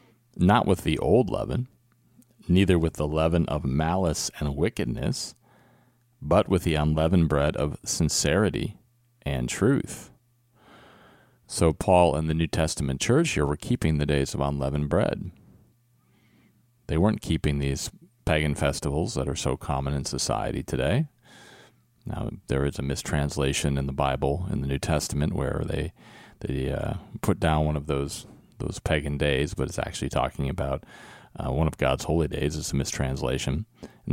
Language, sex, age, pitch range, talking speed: English, male, 40-59, 70-95 Hz, 155 wpm